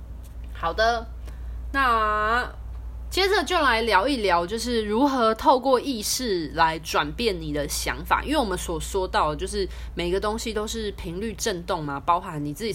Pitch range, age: 160-225 Hz, 20-39